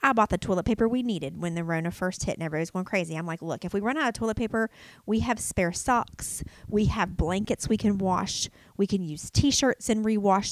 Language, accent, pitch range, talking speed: English, American, 170-215 Hz, 245 wpm